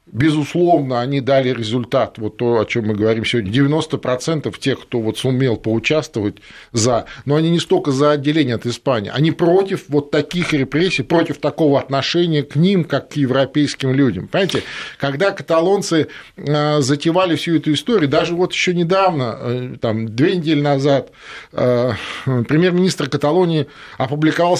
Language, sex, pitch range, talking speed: Russian, male, 135-165 Hz, 140 wpm